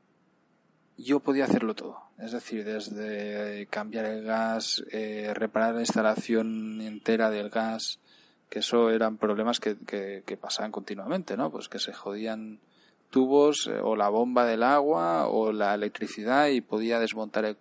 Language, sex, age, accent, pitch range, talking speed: Spanish, male, 20-39, Spanish, 105-125 Hz, 150 wpm